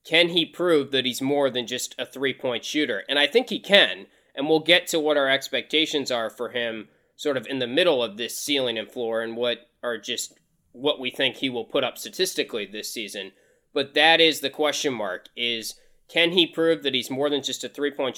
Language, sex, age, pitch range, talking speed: English, male, 20-39, 135-175 Hz, 220 wpm